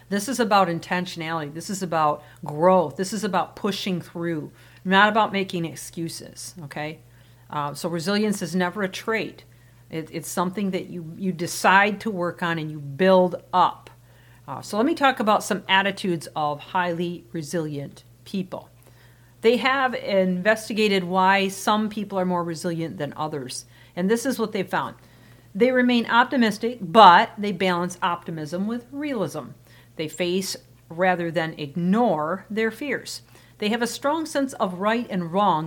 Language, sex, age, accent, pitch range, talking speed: English, female, 50-69, American, 155-210 Hz, 155 wpm